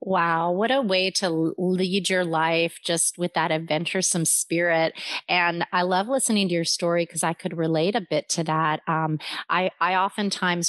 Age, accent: 30-49, American